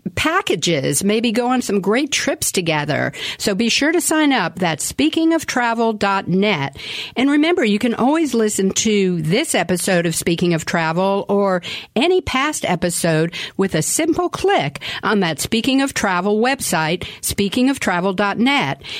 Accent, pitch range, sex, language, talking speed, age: American, 180-250 Hz, female, English, 140 wpm, 50-69